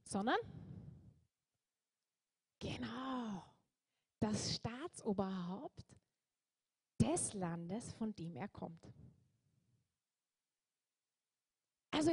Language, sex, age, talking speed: German, female, 30-49, 55 wpm